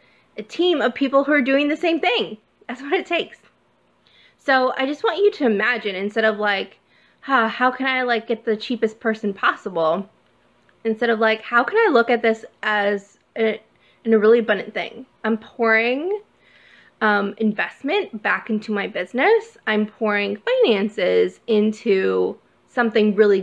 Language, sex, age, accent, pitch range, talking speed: English, female, 20-39, American, 210-255 Hz, 165 wpm